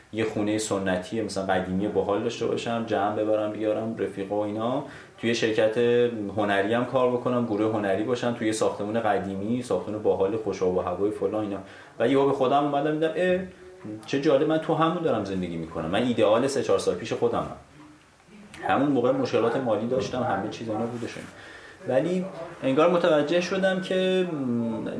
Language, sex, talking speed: Persian, male, 170 wpm